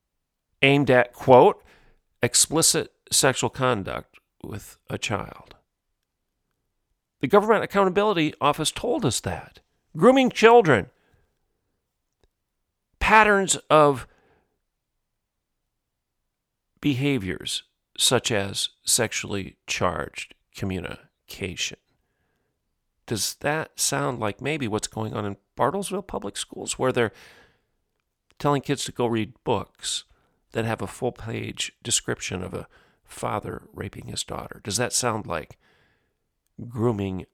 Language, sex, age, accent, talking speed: English, male, 40-59, American, 100 wpm